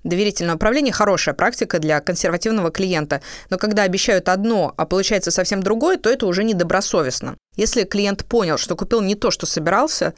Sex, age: female, 20-39